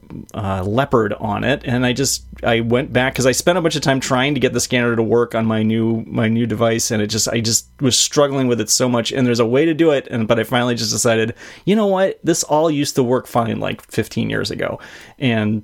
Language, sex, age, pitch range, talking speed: English, male, 30-49, 110-135 Hz, 260 wpm